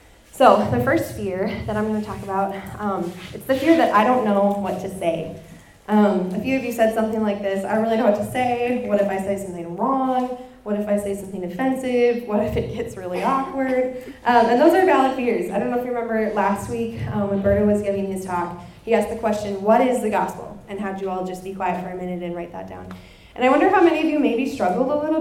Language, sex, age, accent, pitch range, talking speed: English, female, 10-29, American, 195-240 Hz, 260 wpm